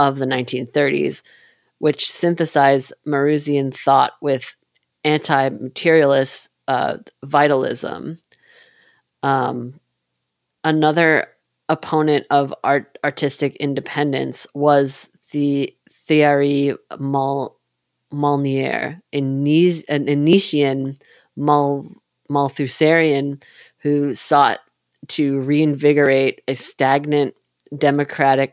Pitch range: 135-145 Hz